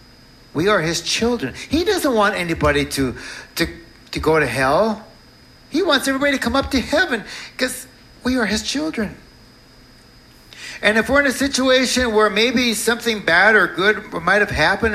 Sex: male